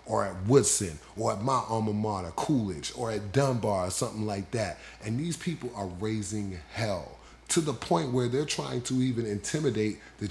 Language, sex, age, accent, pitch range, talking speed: English, male, 30-49, American, 100-130 Hz, 185 wpm